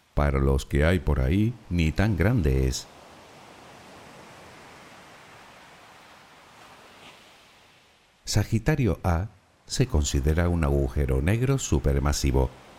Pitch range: 70-110 Hz